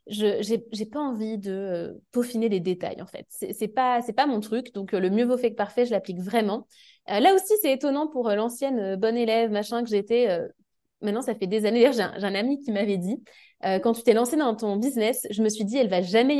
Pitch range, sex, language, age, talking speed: 215-275 Hz, female, French, 20-39, 260 wpm